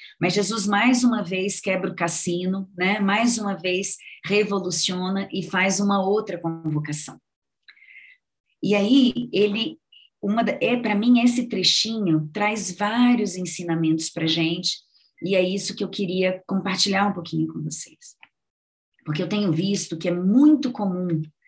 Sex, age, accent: female, 20-39, Brazilian